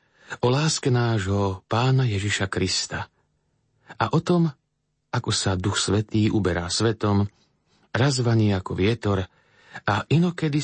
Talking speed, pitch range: 115 wpm, 100-125 Hz